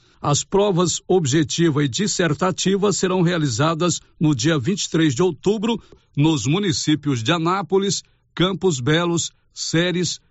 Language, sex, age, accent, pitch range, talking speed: Portuguese, male, 60-79, Brazilian, 150-185 Hz, 110 wpm